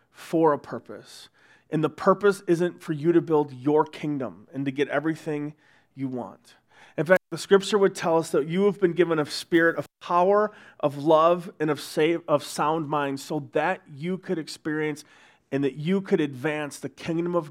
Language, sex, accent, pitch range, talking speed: English, male, American, 140-190 Hz, 185 wpm